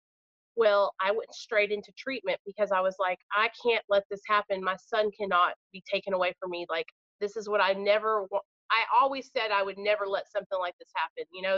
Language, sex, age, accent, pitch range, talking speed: English, female, 30-49, American, 190-260 Hz, 225 wpm